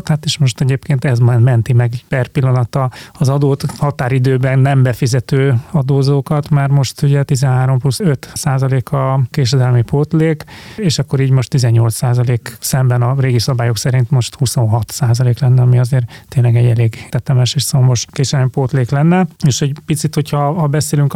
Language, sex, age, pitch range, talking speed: Hungarian, male, 30-49, 125-140 Hz, 165 wpm